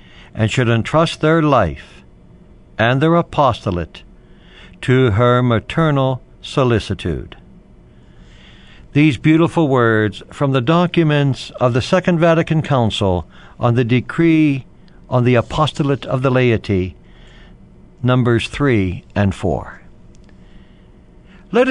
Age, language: 60-79, English